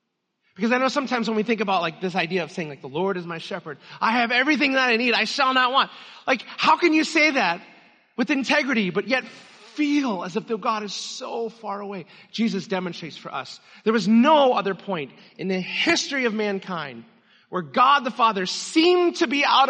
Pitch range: 170-225 Hz